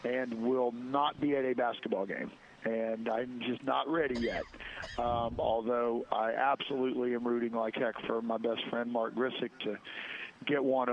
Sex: male